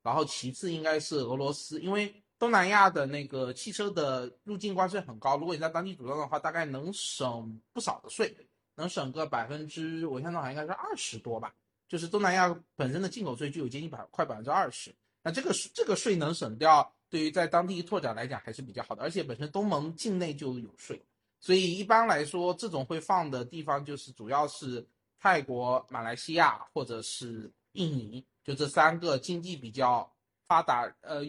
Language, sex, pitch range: Chinese, male, 135-185 Hz